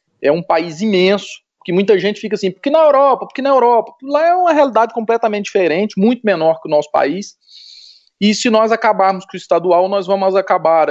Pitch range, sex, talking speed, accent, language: 165-225 Hz, male, 205 wpm, Brazilian, Portuguese